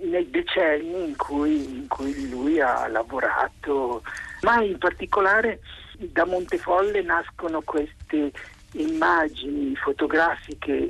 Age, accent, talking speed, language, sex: 50-69, native, 95 wpm, Italian, male